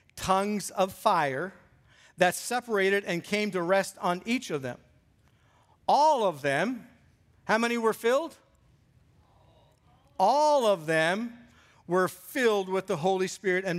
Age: 50-69